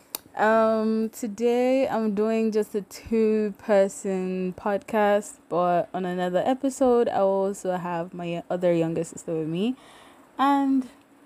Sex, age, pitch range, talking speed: female, 20-39, 175-225 Hz, 125 wpm